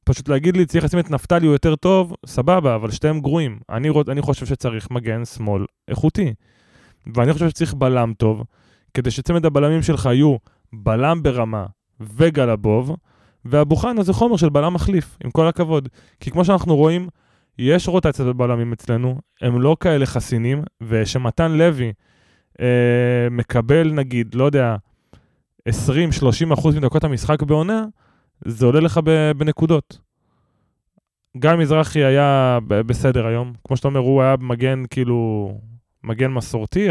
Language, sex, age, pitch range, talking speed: Hebrew, male, 20-39, 115-155 Hz, 140 wpm